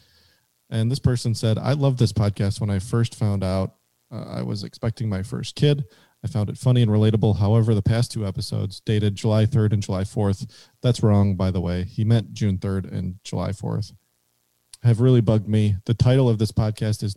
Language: English